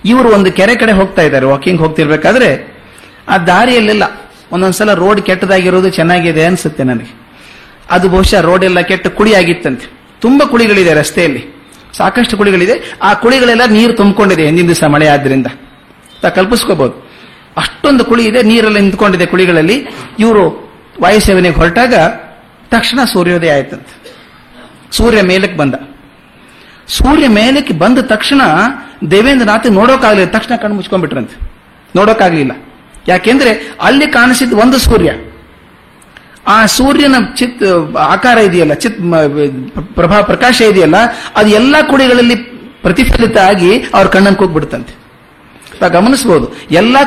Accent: native